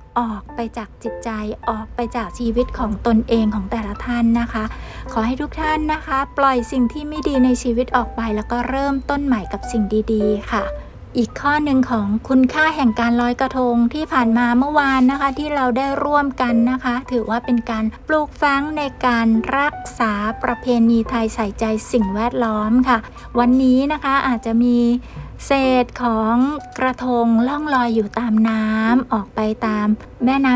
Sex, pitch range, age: female, 225-260 Hz, 60-79